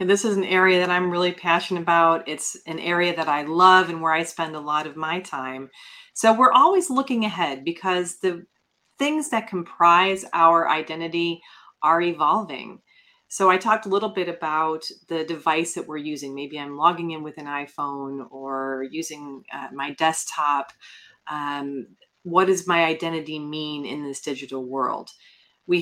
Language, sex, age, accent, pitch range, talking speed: English, female, 30-49, American, 155-190 Hz, 170 wpm